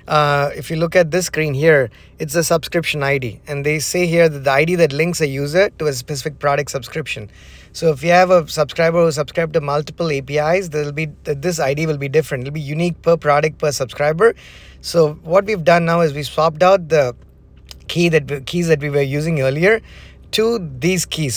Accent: Indian